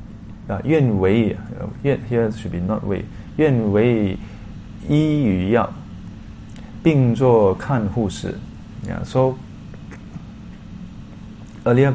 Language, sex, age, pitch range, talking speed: English, male, 20-39, 105-125 Hz, 55 wpm